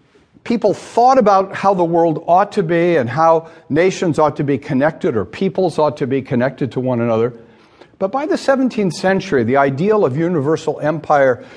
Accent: American